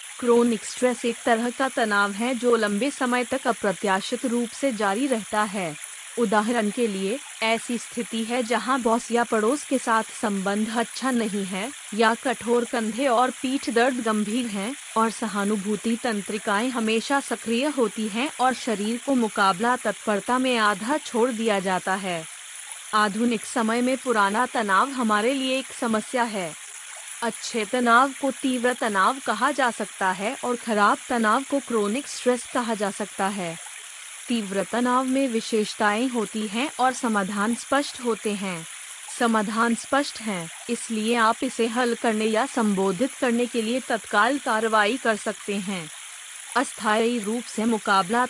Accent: native